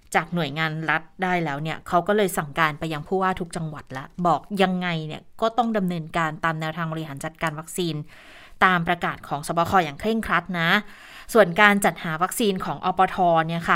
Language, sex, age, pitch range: Thai, female, 20-39, 165-200 Hz